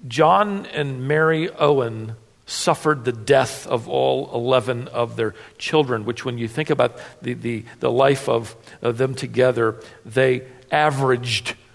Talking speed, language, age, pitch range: 140 wpm, English, 50-69, 120-190 Hz